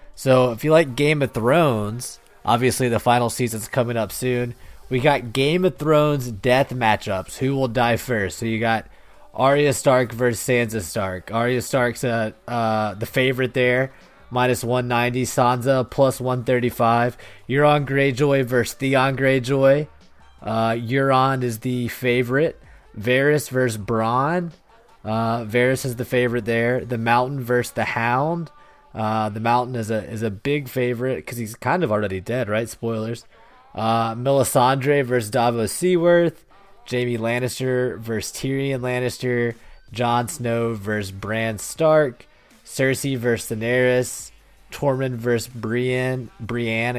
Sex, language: male, English